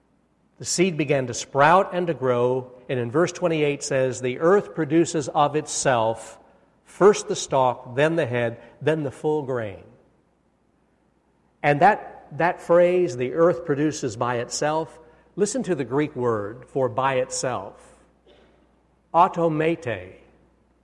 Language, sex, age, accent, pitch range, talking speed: English, male, 60-79, American, 125-170 Hz, 130 wpm